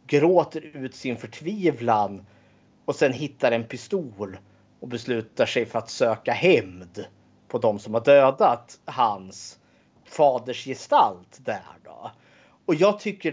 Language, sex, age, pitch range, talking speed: Swedish, male, 30-49, 110-145 Hz, 130 wpm